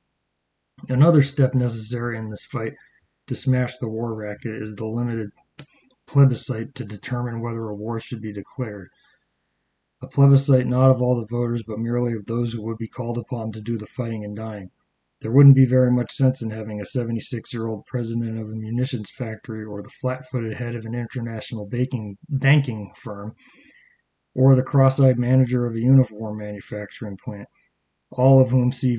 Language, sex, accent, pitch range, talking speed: English, male, American, 110-130 Hz, 175 wpm